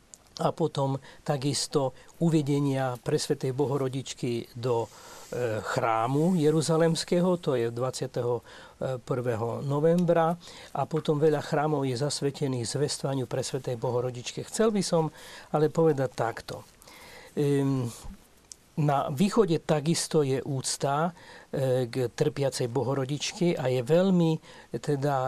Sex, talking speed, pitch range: male, 95 wpm, 135-165 Hz